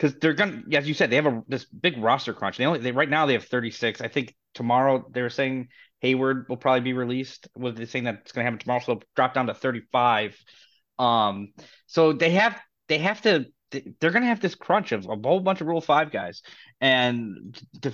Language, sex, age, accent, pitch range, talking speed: English, male, 20-39, American, 115-150 Hz, 230 wpm